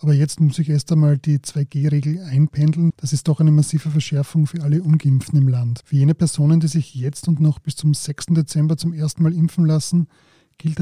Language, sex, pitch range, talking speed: German, male, 140-155 Hz, 210 wpm